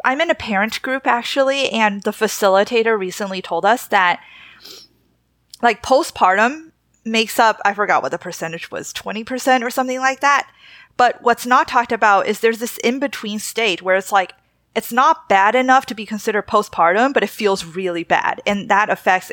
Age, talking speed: 20-39, 175 wpm